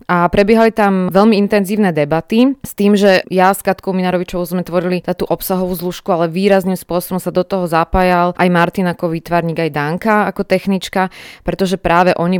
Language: Slovak